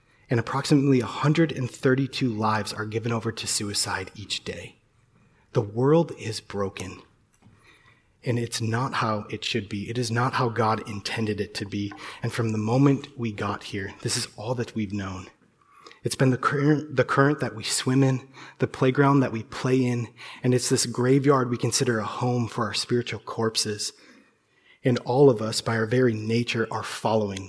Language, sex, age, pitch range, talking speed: English, male, 30-49, 110-130 Hz, 180 wpm